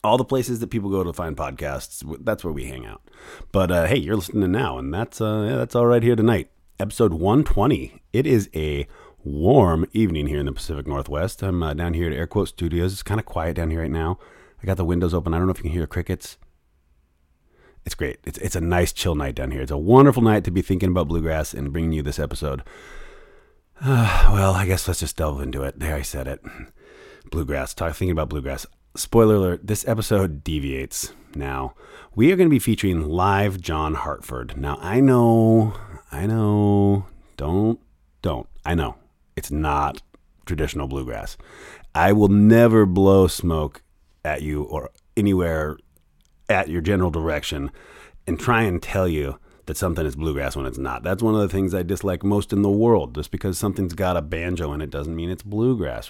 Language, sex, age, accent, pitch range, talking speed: English, male, 30-49, American, 75-100 Hz, 200 wpm